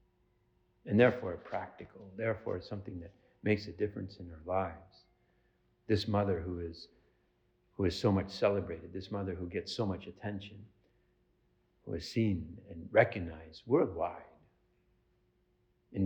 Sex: male